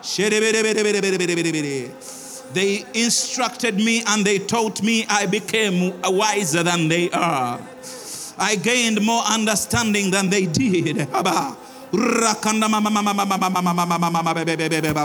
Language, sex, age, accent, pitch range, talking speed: English, male, 50-69, Nigerian, 170-210 Hz, 70 wpm